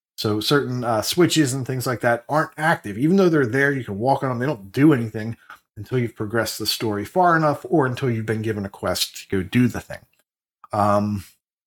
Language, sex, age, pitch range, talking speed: English, male, 30-49, 115-155 Hz, 220 wpm